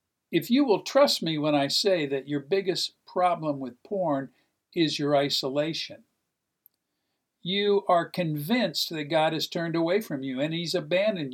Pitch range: 145-195 Hz